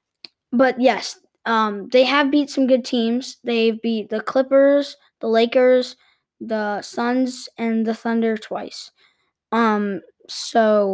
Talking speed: 125 wpm